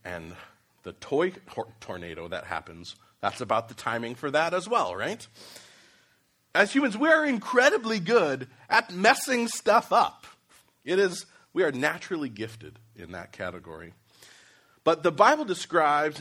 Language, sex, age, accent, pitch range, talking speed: English, male, 40-59, American, 95-150 Hz, 140 wpm